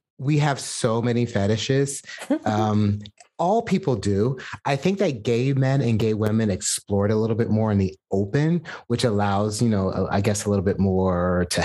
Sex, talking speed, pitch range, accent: male, 185 wpm, 100-140 Hz, American